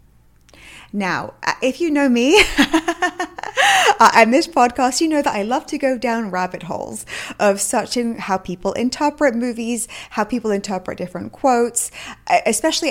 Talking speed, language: 140 wpm, English